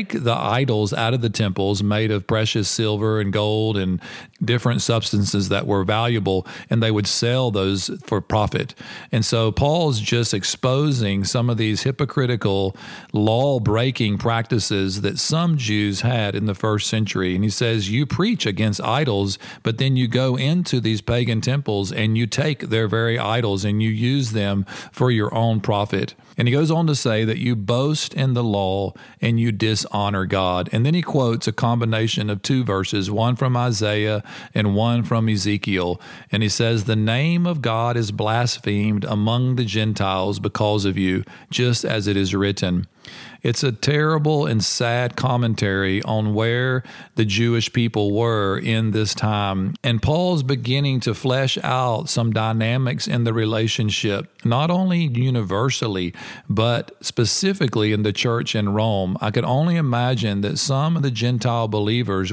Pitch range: 105-125 Hz